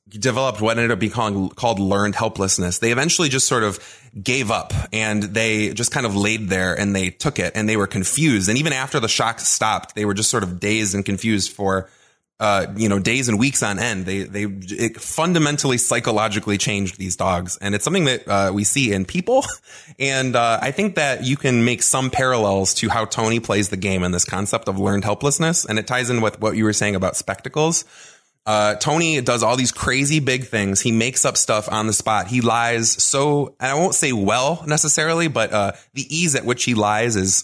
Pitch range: 100-130 Hz